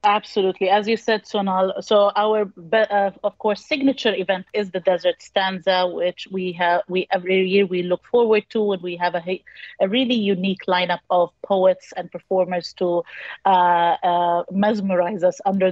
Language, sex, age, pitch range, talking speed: English, female, 30-49, 180-210 Hz, 170 wpm